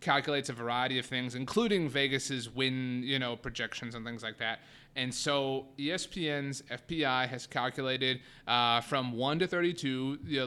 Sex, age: male, 30-49